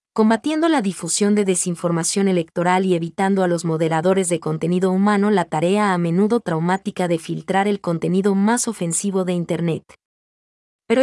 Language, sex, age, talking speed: Vietnamese, female, 30-49, 150 wpm